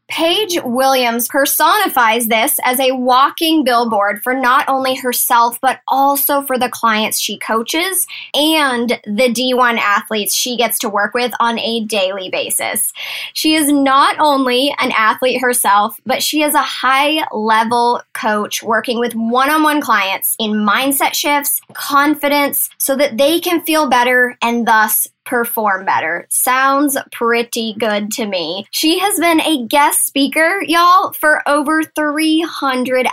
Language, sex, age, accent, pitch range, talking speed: English, male, 10-29, American, 230-285 Hz, 140 wpm